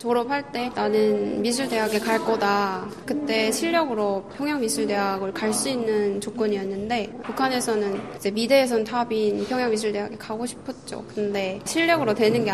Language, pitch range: Korean, 205-245 Hz